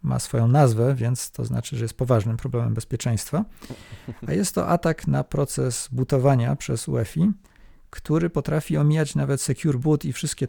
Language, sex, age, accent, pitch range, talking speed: Polish, male, 40-59, native, 120-155 Hz, 160 wpm